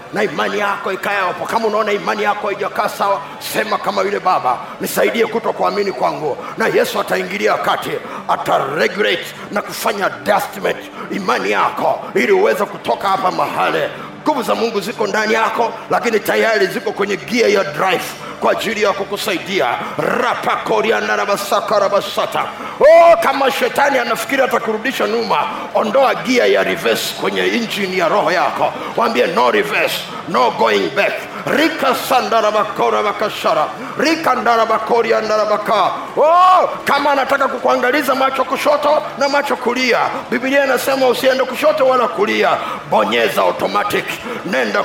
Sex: male